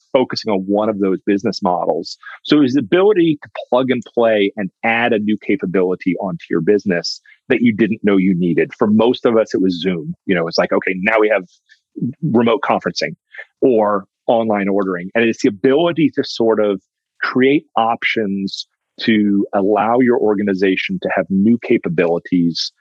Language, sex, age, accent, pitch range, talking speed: English, male, 40-59, American, 95-120 Hz, 175 wpm